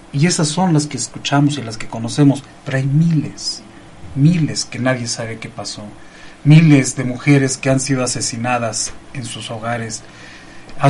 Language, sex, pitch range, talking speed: Spanish, male, 120-150 Hz, 165 wpm